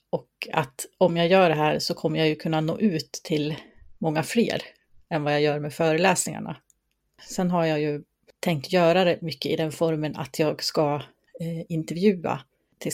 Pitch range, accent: 155-175 Hz, native